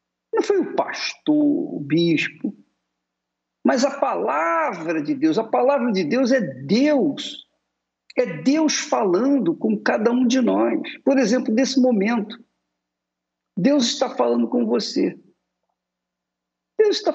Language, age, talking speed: Portuguese, 50-69, 125 wpm